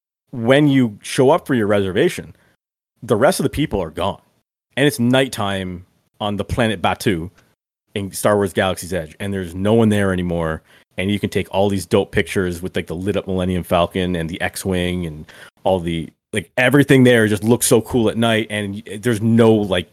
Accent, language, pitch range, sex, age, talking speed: American, English, 95-120 Hz, male, 30-49, 200 wpm